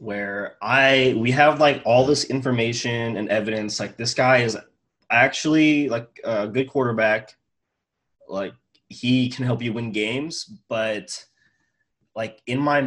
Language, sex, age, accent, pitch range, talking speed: English, male, 20-39, American, 105-130 Hz, 140 wpm